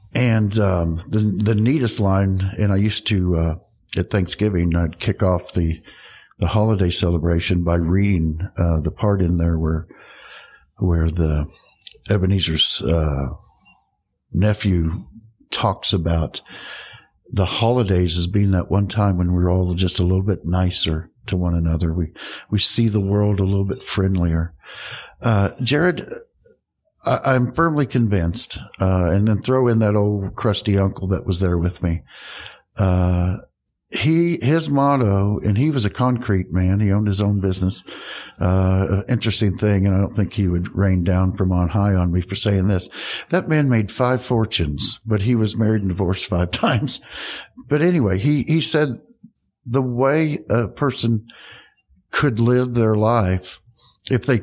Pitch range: 90-115 Hz